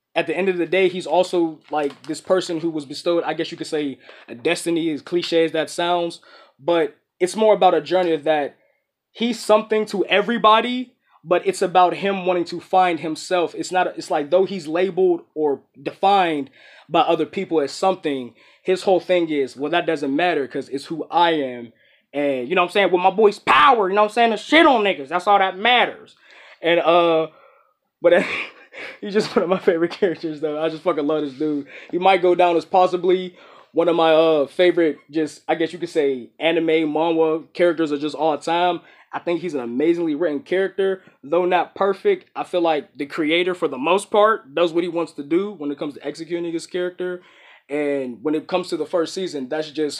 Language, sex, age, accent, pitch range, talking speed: English, male, 20-39, American, 155-190 Hz, 215 wpm